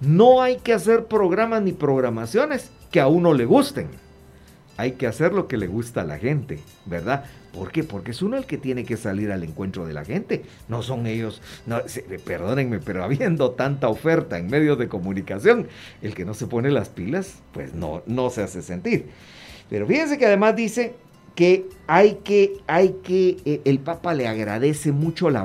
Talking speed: 190 wpm